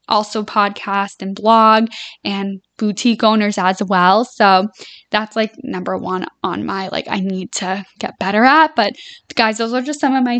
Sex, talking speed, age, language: female, 180 wpm, 10-29, English